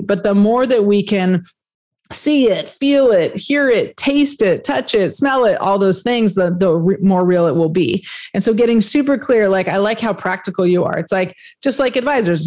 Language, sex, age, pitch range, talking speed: English, female, 30-49, 185-225 Hz, 215 wpm